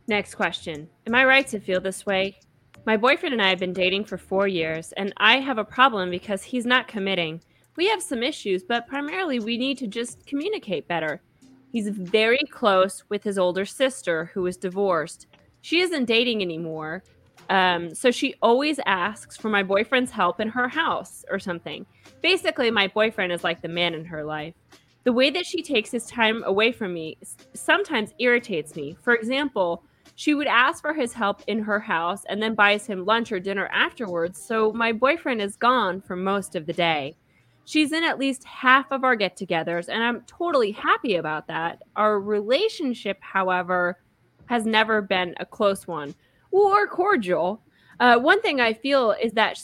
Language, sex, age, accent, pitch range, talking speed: English, female, 20-39, American, 185-255 Hz, 185 wpm